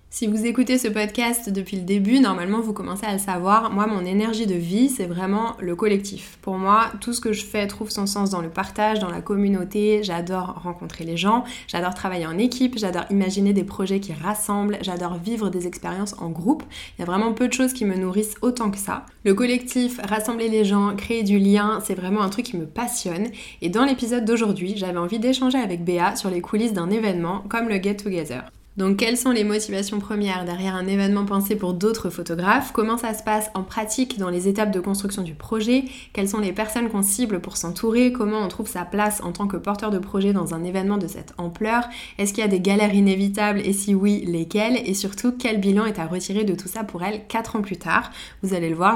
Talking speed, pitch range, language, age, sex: 230 wpm, 190-225 Hz, French, 20-39, female